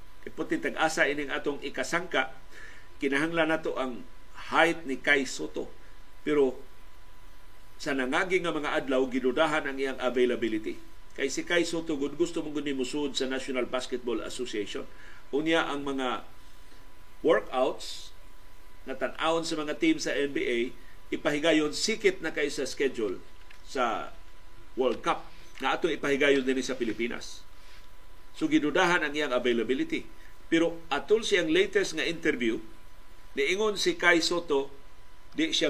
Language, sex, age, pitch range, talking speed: Filipino, male, 50-69, 130-170 Hz, 125 wpm